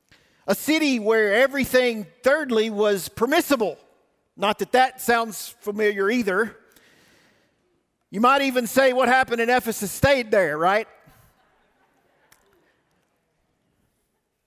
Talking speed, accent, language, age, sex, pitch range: 105 wpm, American, English, 50-69, male, 200-255 Hz